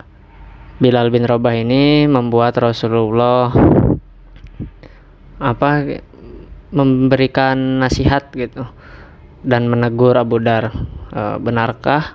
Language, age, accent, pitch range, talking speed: Indonesian, 20-39, native, 110-125 Hz, 80 wpm